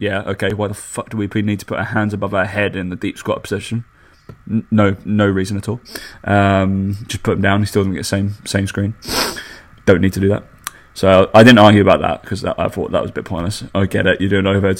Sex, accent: male, British